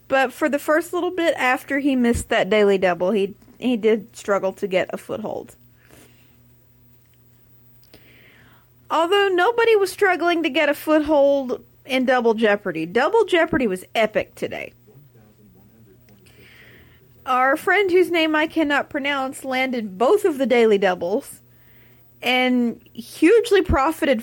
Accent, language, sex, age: American, English, female, 30-49